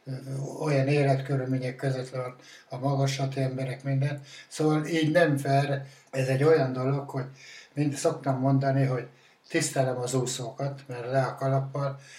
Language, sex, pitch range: Hungarian, male, 130-145 Hz